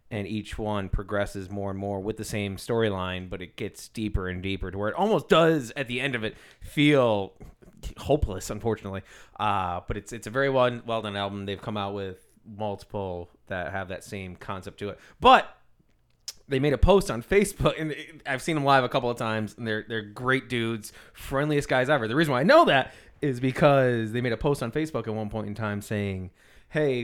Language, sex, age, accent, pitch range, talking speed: English, male, 20-39, American, 105-135 Hz, 215 wpm